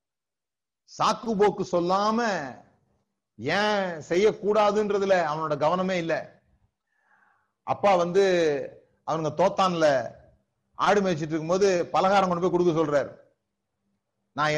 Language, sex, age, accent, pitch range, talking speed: Tamil, male, 30-49, native, 170-205 Hz, 85 wpm